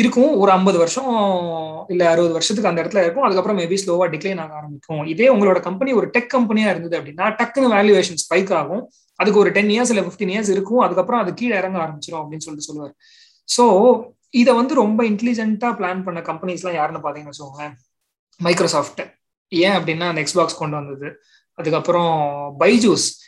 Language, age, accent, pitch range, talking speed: Tamil, 20-39, native, 160-215 Hz, 65 wpm